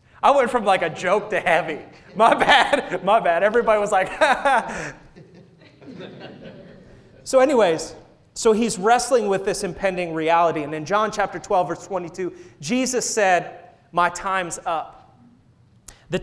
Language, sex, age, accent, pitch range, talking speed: English, male, 30-49, American, 175-230 Hz, 140 wpm